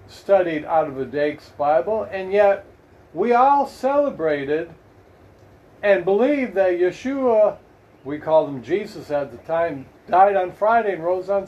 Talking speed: 145 wpm